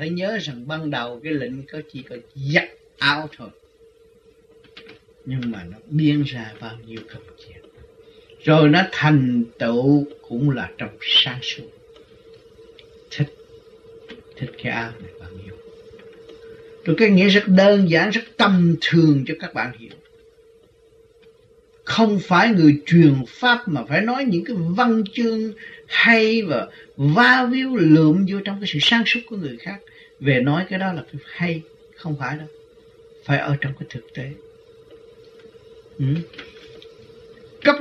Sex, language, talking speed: male, Vietnamese, 150 wpm